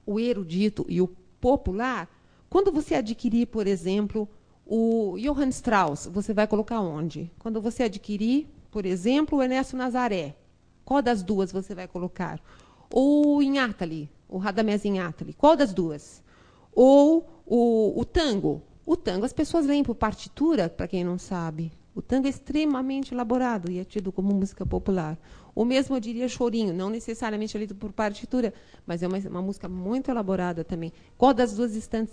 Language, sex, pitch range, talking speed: Portuguese, female, 185-260 Hz, 165 wpm